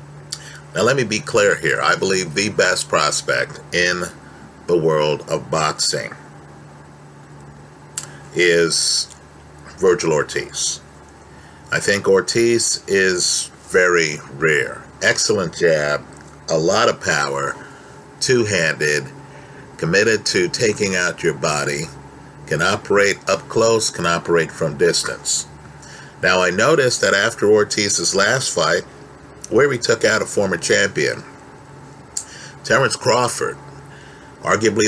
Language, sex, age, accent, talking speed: English, male, 50-69, American, 110 wpm